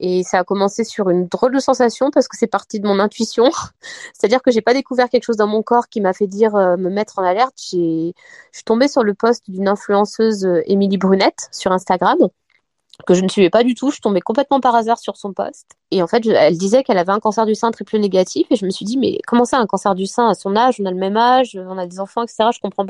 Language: French